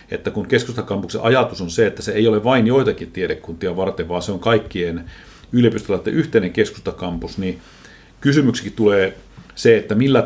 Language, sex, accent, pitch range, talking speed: Finnish, male, native, 85-115 Hz, 160 wpm